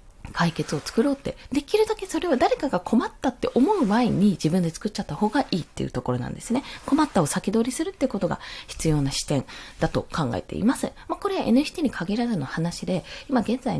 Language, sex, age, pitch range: Japanese, female, 20-39, 170-270 Hz